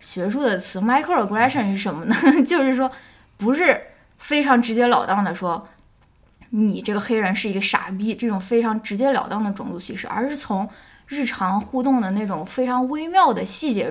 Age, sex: 10-29, female